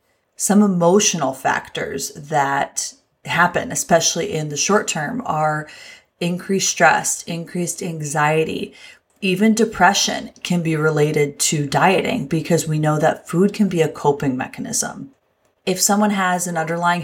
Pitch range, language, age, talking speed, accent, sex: 160-200 Hz, English, 30-49, 130 wpm, American, female